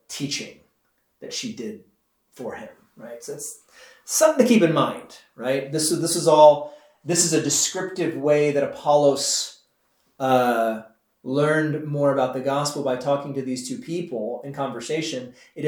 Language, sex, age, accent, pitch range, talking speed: English, male, 30-49, American, 130-160 Hz, 160 wpm